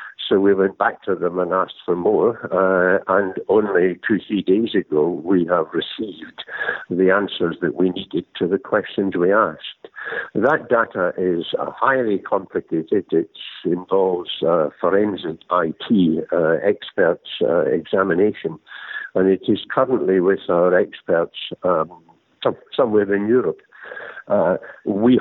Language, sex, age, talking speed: English, male, 60-79, 140 wpm